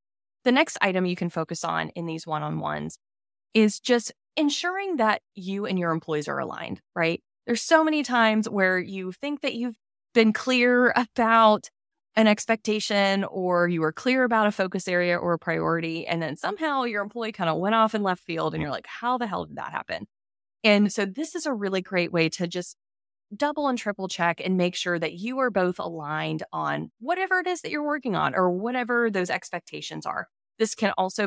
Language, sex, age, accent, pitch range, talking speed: English, female, 20-39, American, 165-230 Hz, 205 wpm